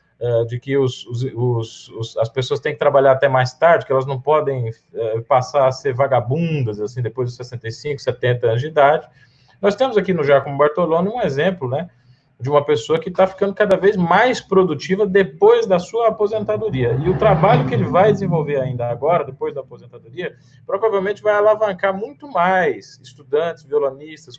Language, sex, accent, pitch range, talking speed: Portuguese, male, Brazilian, 130-190 Hz, 175 wpm